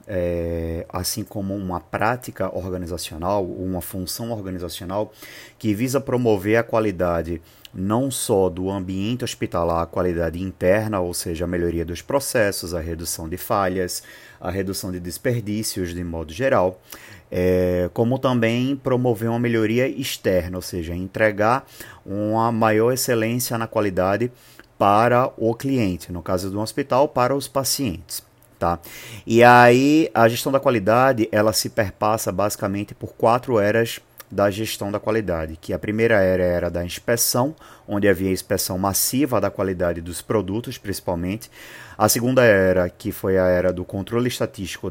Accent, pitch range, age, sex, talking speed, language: Brazilian, 90-115 Hz, 30-49, male, 145 wpm, Portuguese